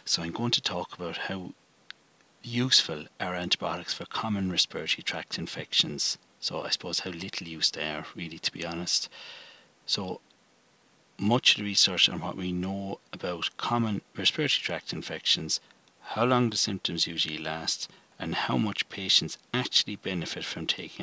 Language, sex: English, male